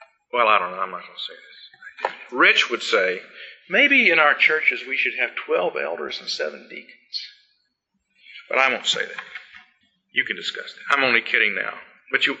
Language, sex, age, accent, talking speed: English, male, 50-69, American, 195 wpm